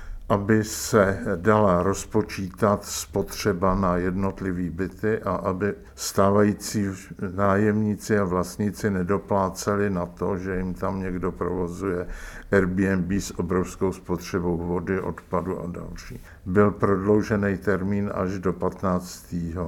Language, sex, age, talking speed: Czech, male, 50-69, 110 wpm